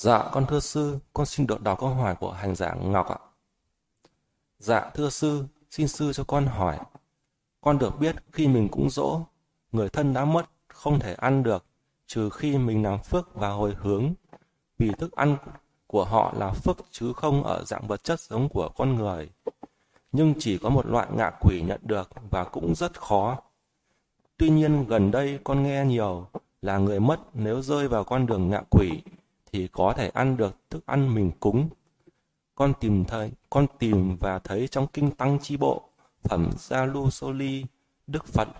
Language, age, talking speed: Vietnamese, 20-39, 185 wpm